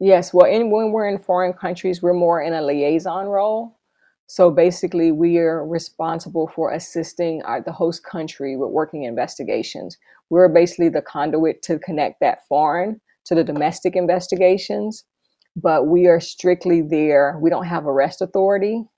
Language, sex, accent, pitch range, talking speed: English, female, American, 150-180 Hz, 150 wpm